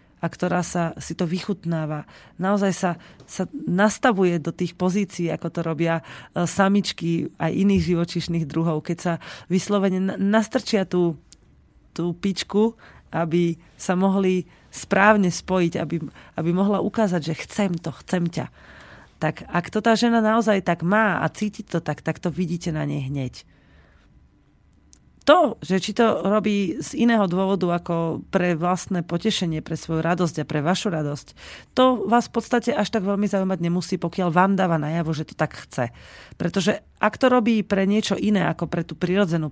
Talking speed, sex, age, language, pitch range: 160 wpm, female, 30-49, Slovak, 165-195 Hz